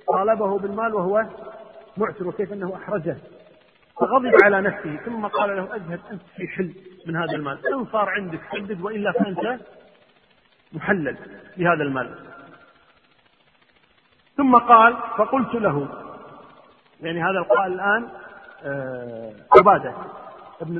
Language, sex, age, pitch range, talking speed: Arabic, male, 40-59, 190-240 Hz, 115 wpm